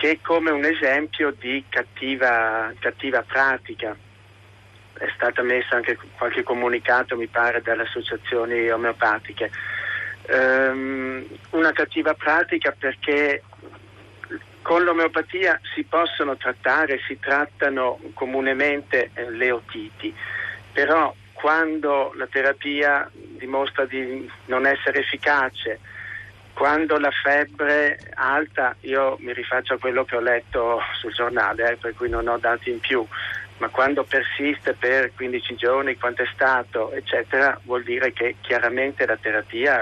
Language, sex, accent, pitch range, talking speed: Italian, male, native, 120-145 Hz, 120 wpm